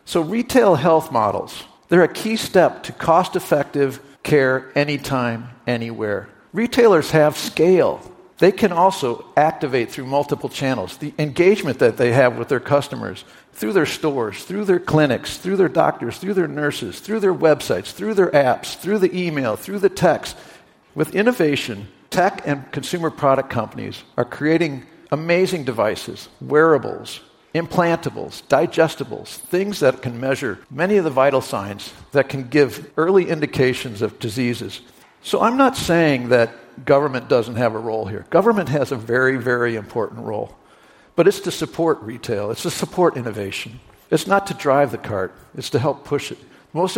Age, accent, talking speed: 50-69, American, 160 wpm